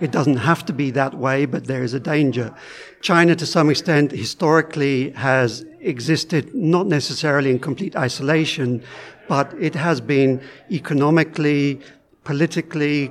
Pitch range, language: 130-160 Hz, French